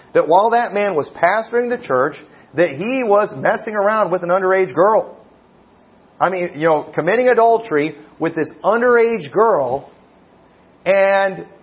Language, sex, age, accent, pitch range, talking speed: English, male, 40-59, American, 170-235 Hz, 145 wpm